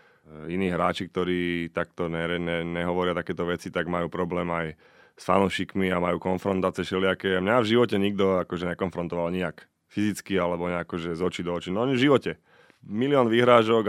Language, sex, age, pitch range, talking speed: Slovak, male, 20-39, 85-105 Hz, 170 wpm